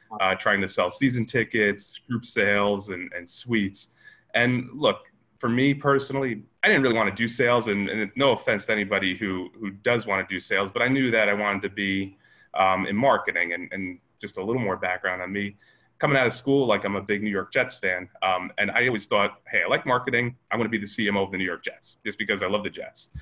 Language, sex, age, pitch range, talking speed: English, male, 30-49, 100-125 Hz, 245 wpm